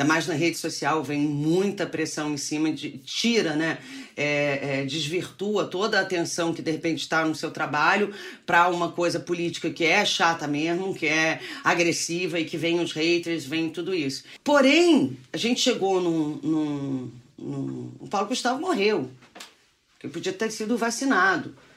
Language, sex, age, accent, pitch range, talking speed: Portuguese, female, 40-59, Brazilian, 160-245 Hz, 160 wpm